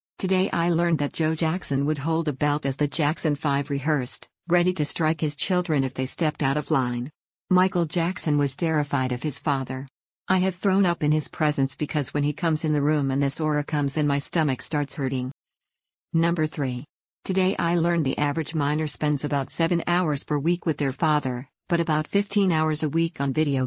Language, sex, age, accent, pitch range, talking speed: English, female, 50-69, American, 140-170 Hz, 205 wpm